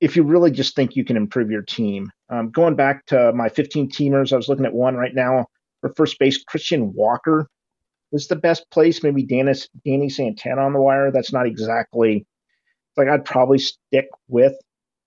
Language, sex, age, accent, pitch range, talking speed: English, male, 40-59, American, 120-150 Hz, 190 wpm